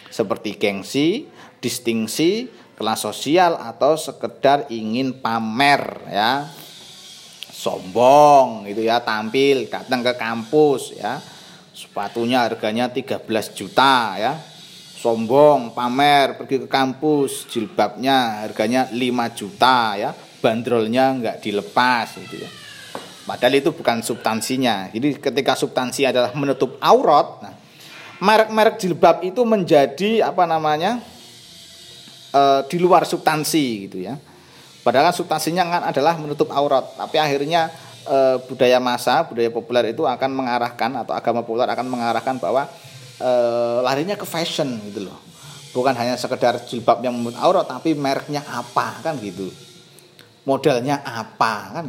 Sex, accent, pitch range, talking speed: male, native, 120-150 Hz, 120 wpm